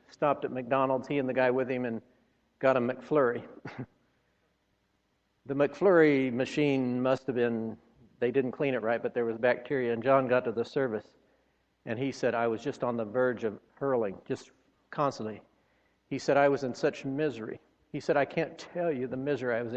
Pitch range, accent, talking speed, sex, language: 125-150 Hz, American, 195 wpm, male, English